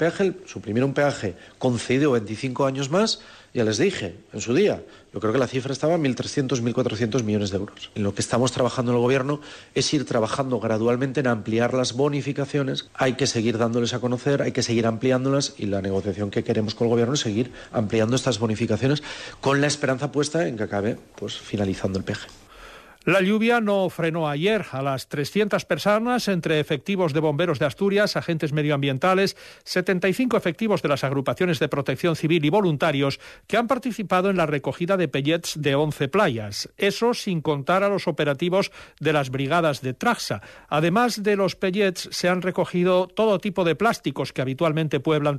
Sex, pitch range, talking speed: male, 125-180 Hz, 180 wpm